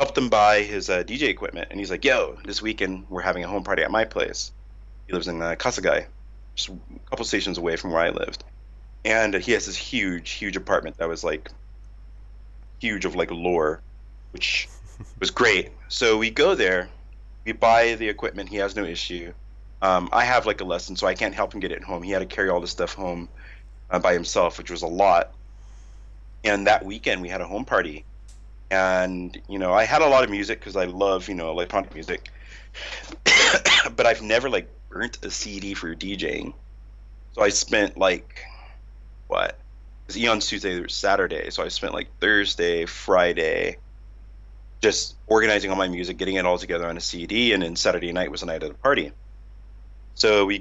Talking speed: 200 wpm